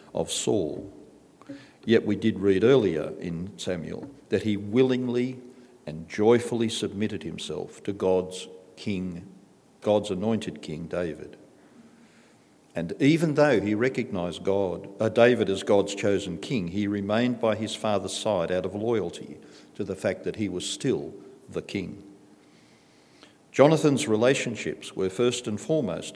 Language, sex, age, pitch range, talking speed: English, male, 50-69, 95-125 Hz, 135 wpm